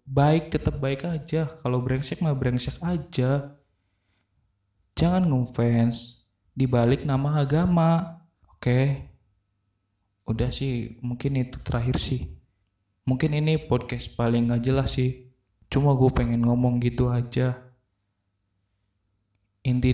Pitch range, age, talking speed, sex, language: 115-135 Hz, 20-39, 110 wpm, male, Indonesian